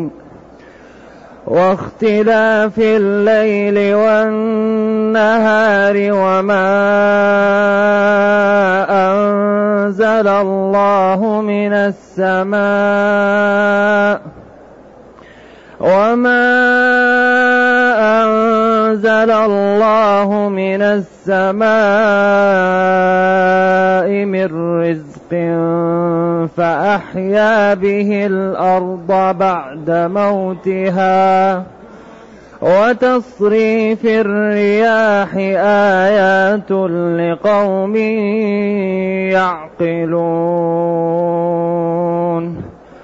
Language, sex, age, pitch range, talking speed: Arabic, male, 30-49, 185-220 Hz, 35 wpm